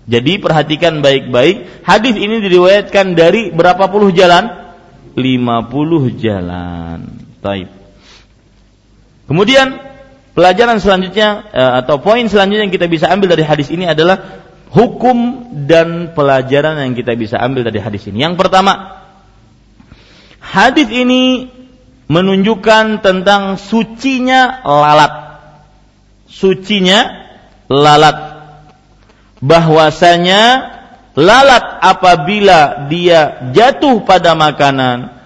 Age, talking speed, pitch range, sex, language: 40-59, 95 wpm, 120-195 Hz, male, Malay